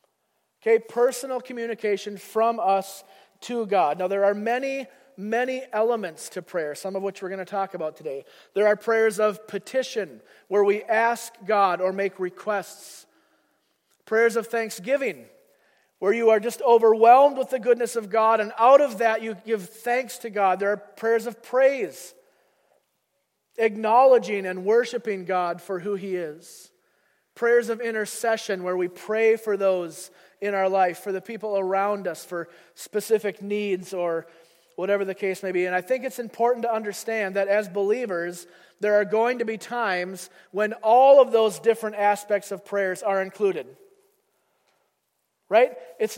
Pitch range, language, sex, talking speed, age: 195-235 Hz, English, male, 160 wpm, 40-59